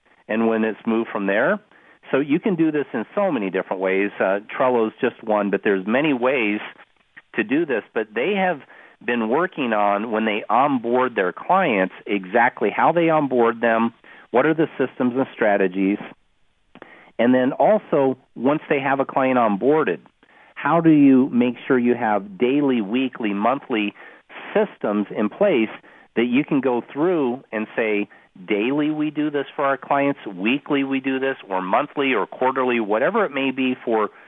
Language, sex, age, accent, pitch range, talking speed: English, male, 40-59, American, 110-145 Hz, 170 wpm